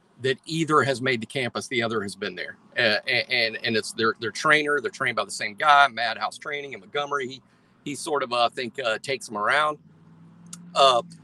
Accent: American